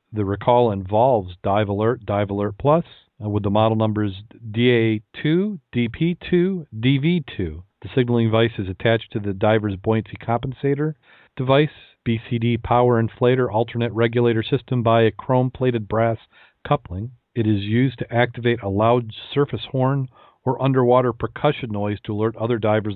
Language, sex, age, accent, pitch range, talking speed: English, male, 40-59, American, 105-125 Hz, 160 wpm